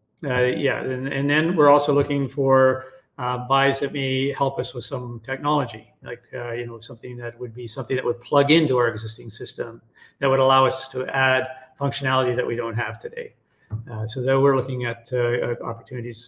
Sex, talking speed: male, 195 wpm